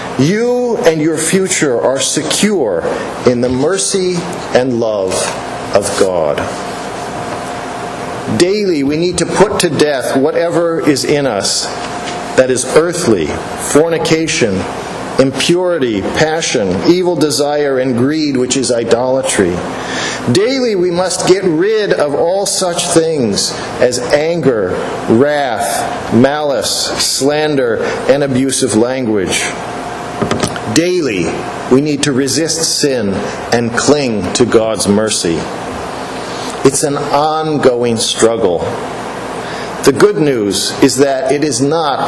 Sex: male